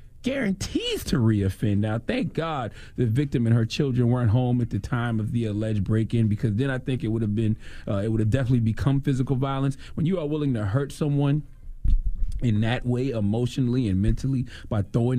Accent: American